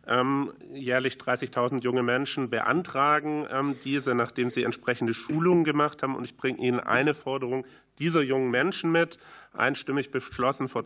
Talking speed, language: 140 wpm, German